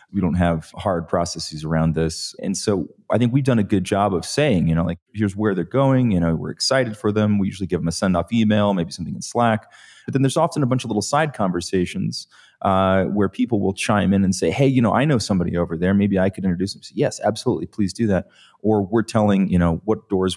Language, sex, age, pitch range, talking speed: English, male, 30-49, 90-110 Hz, 255 wpm